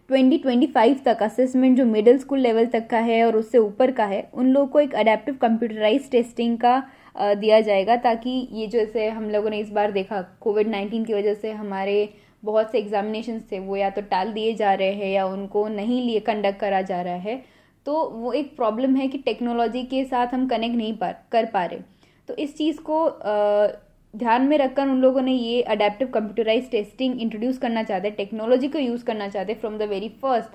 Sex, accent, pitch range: female, native, 210-255 Hz